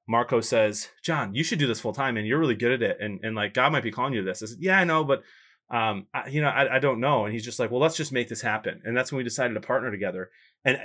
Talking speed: 315 wpm